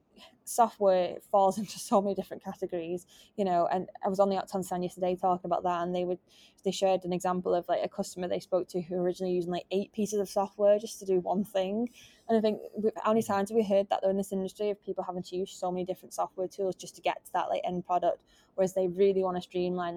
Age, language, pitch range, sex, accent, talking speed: 20-39, English, 180-200 Hz, female, British, 255 wpm